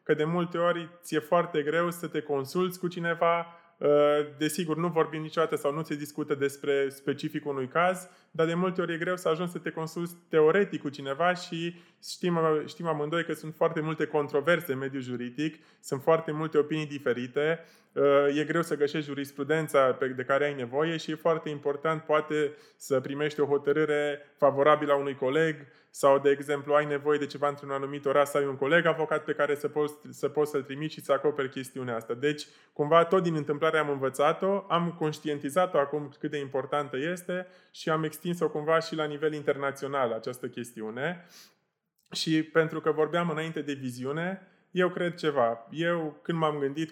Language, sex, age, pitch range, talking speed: Romanian, male, 20-39, 145-170 Hz, 185 wpm